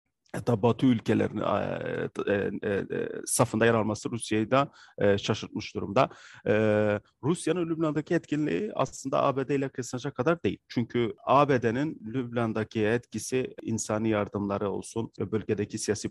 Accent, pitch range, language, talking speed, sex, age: native, 105-120 Hz, Turkish, 125 wpm, male, 40-59